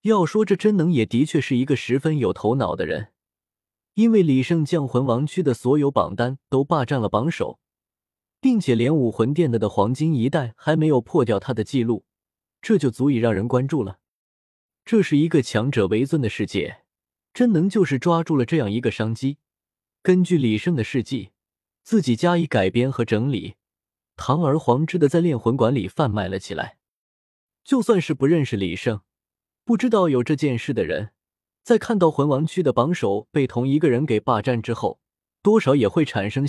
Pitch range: 110-165 Hz